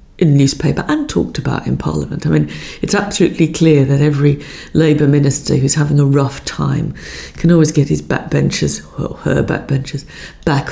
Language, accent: English, British